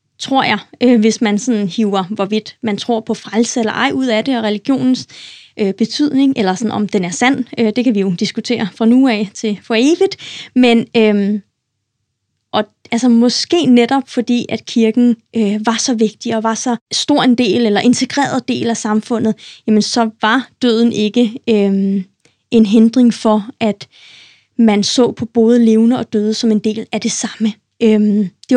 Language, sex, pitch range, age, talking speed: Danish, female, 210-250 Hz, 20-39, 185 wpm